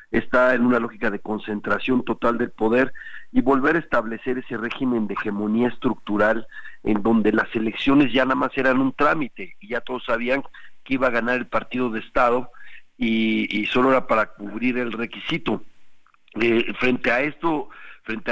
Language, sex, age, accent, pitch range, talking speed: Spanish, male, 50-69, Mexican, 110-135 Hz, 175 wpm